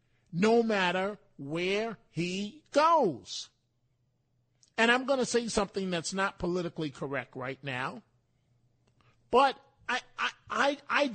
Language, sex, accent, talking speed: English, male, American, 120 wpm